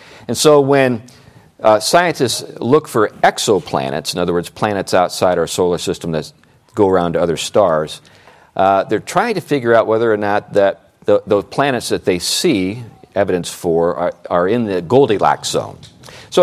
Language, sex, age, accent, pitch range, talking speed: English, male, 50-69, American, 90-130 Hz, 170 wpm